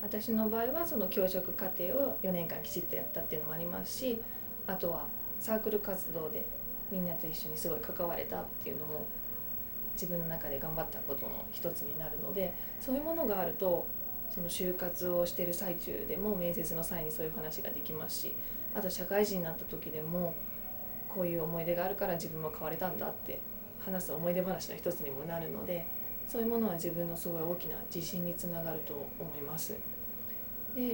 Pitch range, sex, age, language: 170-215 Hz, female, 20-39, Japanese